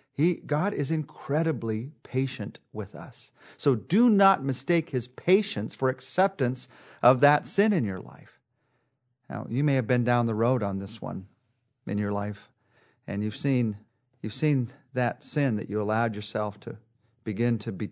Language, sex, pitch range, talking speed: English, male, 105-130 Hz, 160 wpm